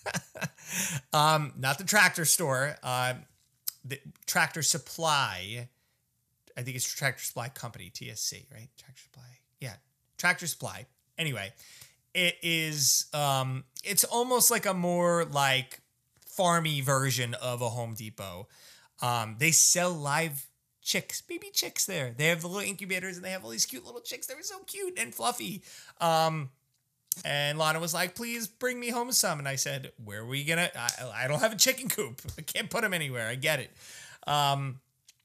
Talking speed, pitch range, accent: 165 wpm, 125-170 Hz, American